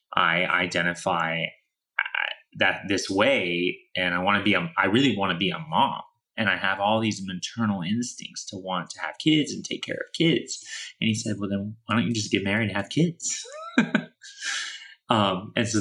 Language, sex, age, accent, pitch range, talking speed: English, male, 30-49, American, 90-115 Hz, 195 wpm